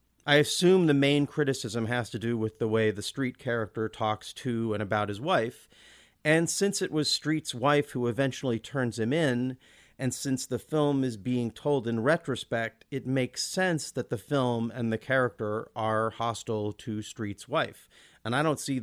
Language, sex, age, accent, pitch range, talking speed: English, male, 40-59, American, 110-135 Hz, 185 wpm